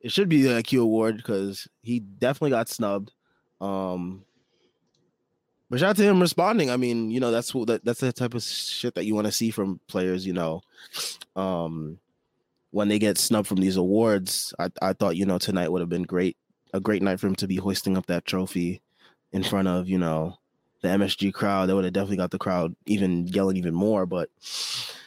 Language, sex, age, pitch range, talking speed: English, male, 20-39, 95-125 Hz, 210 wpm